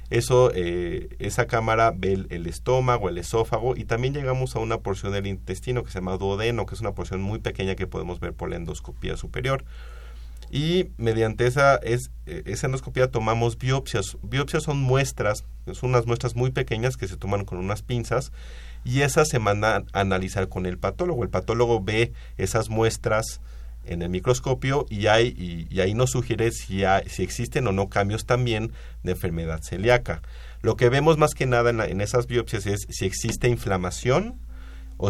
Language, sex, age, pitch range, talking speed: Spanish, male, 30-49, 90-120 Hz, 185 wpm